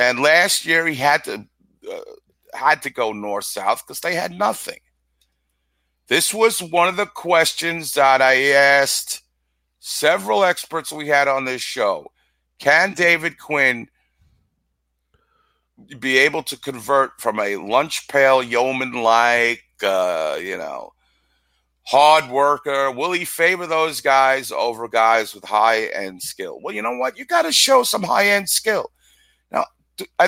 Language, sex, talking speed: English, male, 145 wpm